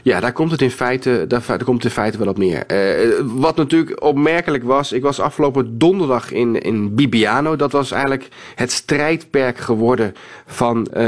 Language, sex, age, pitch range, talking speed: Dutch, male, 40-59, 120-145 Hz, 170 wpm